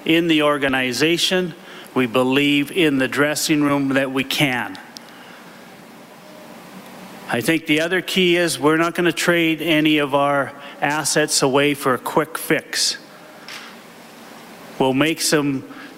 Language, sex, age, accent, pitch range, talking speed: English, male, 40-59, American, 140-165 Hz, 130 wpm